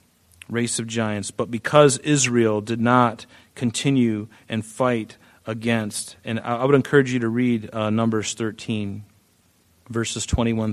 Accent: American